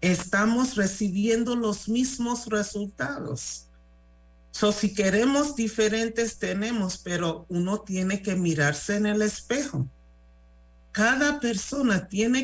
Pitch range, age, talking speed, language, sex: 150-210 Hz, 50-69, 100 wpm, Spanish, male